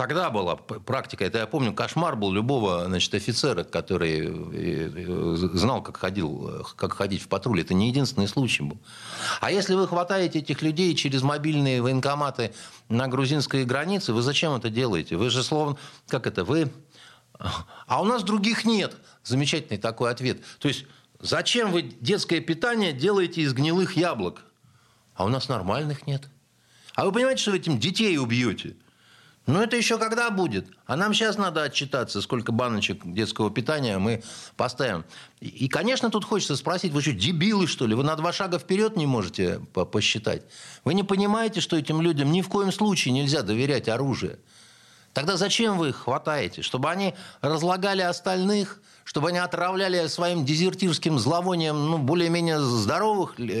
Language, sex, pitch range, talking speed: Russian, male, 125-185 Hz, 155 wpm